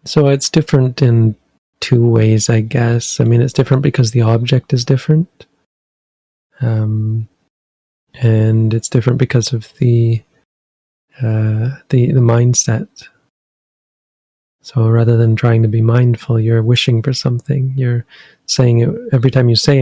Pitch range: 115-130 Hz